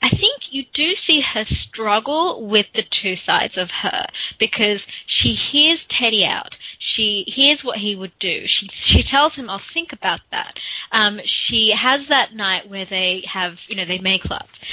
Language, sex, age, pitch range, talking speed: English, female, 20-39, 195-285 Hz, 195 wpm